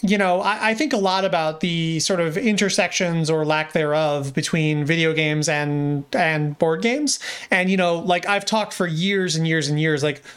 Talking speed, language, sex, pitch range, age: 205 wpm, English, male, 155-195 Hz, 30-49